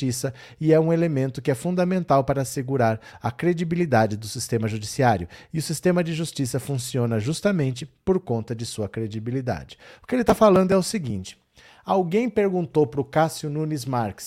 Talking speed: 175 wpm